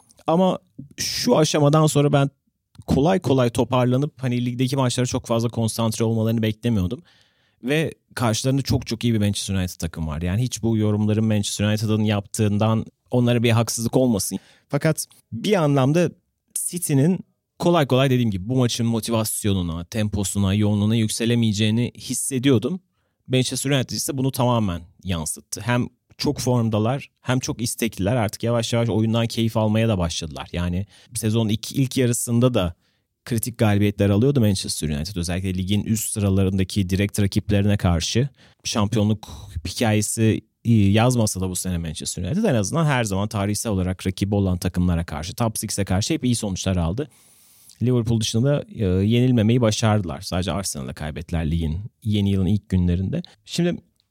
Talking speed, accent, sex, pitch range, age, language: 140 wpm, native, male, 100-125 Hz, 30-49, Turkish